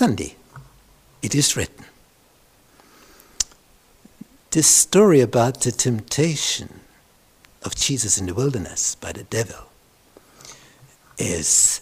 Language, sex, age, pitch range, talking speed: English, male, 60-79, 115-150 Hz, 90 wpm